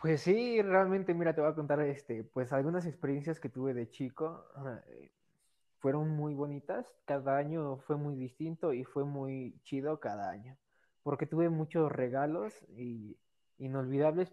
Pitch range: 130-155 Hz